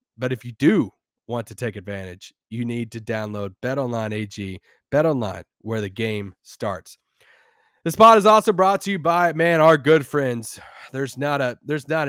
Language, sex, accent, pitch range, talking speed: English, male, American, 120-160 Hz, 180 wpm